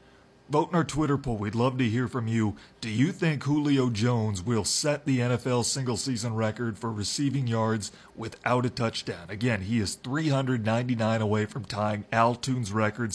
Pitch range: 110-130 Hz